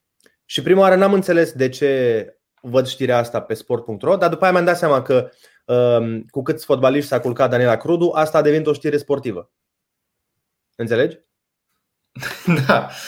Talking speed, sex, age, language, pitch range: 155 wpm, male, 30-49, Romanian, 140-210 Hz